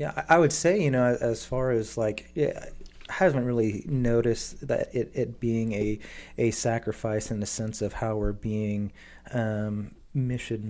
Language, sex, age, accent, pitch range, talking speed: English, male, 30-49, American, 110-120 Hz, 170 wpm